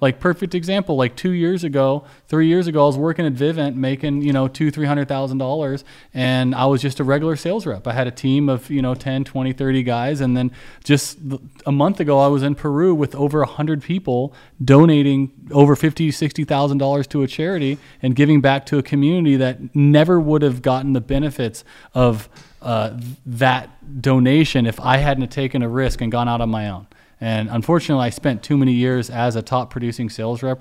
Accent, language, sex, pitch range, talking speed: American, English, male, 125-150 Hz, 200 wpm